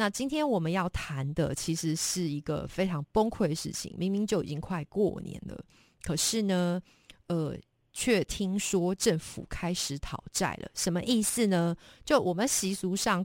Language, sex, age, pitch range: Chinese, female, 30-49, 160-210 Hz